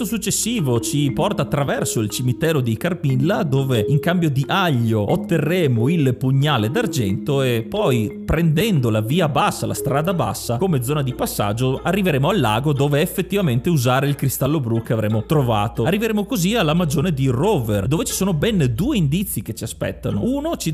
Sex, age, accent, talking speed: male, 30-49, native, 170 wpm